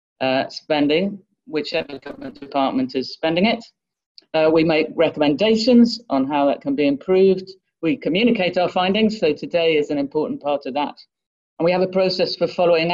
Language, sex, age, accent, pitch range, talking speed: English, female, 40-59, British, 135-180 Hz, 170 wpm